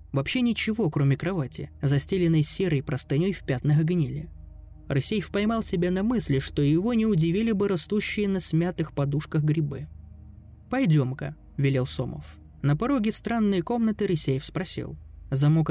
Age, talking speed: 20-39, 140 wpm